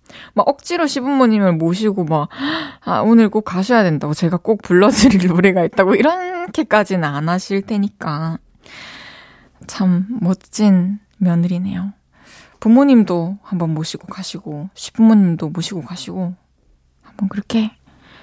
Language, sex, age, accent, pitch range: Korean, female, 20-39, native, 175-250 Hz